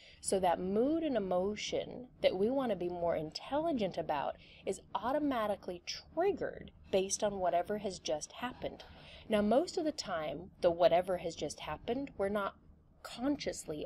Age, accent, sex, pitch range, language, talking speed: 30-49, American, female, 165-230 Hz, English, 150 wpm